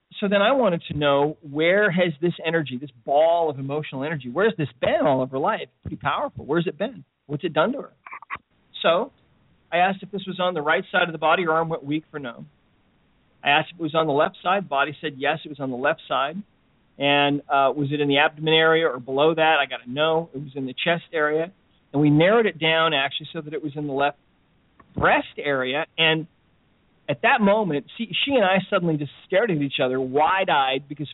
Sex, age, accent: male, 40-59, American